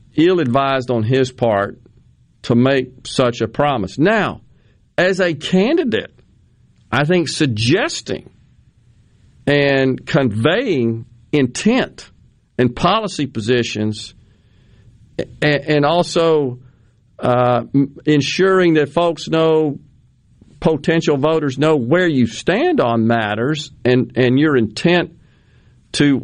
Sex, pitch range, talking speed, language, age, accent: male, 120-155 Hz, 95 wpm, English, 50-69, American